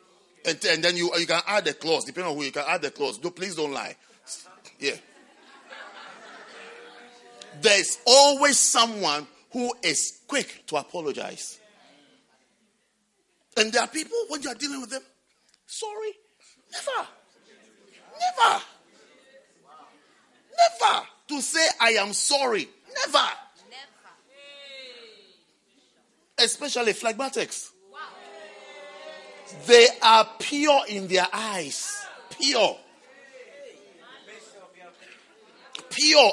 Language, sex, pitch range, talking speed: English, male, 230-310 Hz, 100 wpm